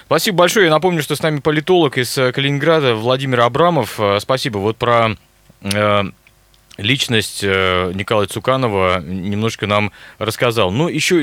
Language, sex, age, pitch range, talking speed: Russian, male, 20-39, 100-130 Hz, 125 wpm